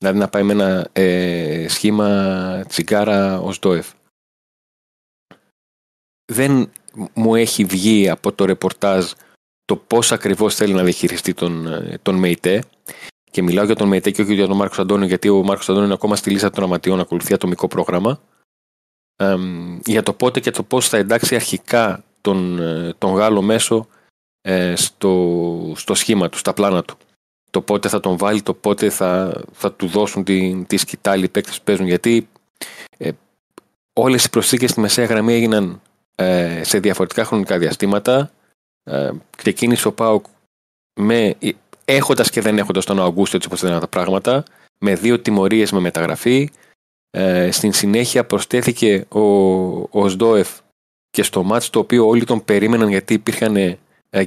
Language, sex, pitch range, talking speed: Greek, male, 95-110 Hz, 160 wpm